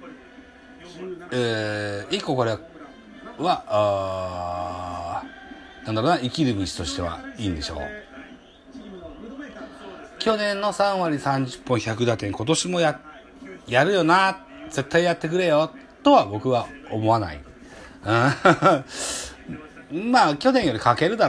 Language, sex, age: Japanese, male, 40-59